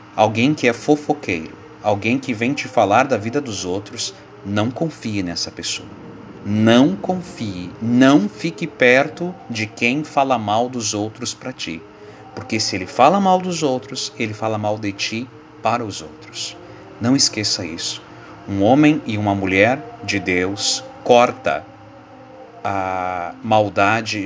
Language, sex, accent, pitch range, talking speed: Portuguese, male, Brazilian, 100-125 Hz, 145 wpm